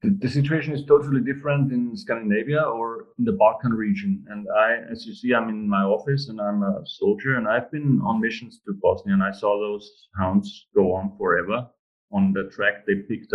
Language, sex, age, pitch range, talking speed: English, male, 40-59, 110-145 Hz, 200 wpm